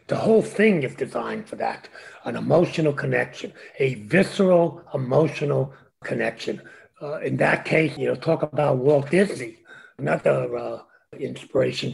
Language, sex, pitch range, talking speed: English, male, 145-205 Hz, 135 wpm